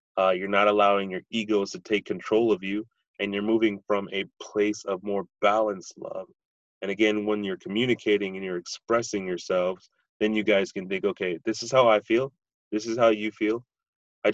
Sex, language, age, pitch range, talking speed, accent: male, English, 30-49, 95-110 Hz, 195 wpm, American